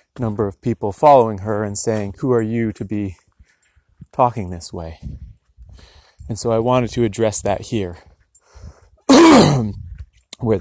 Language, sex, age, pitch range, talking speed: English, male, 30-49, 95-120 Hz, 135 wpm